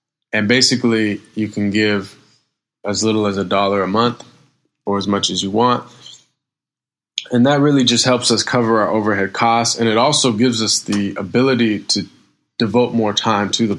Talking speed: 180 wpm